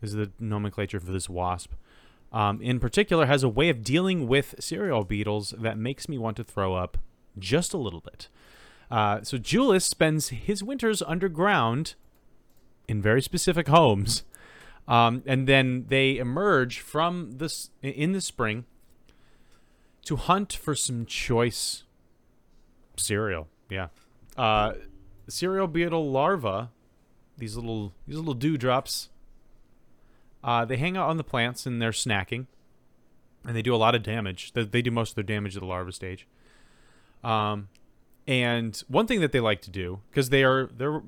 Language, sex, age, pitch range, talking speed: English, male, 30-49, 100-135 Hz, 155 wpm